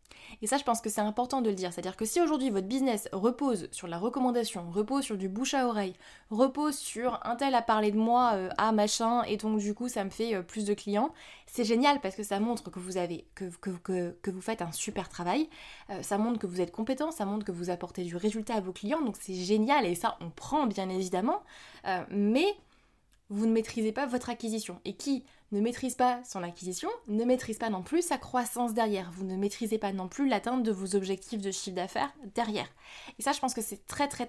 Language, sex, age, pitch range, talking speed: French, female, 20-39, 205-255 Hz, 240 wpm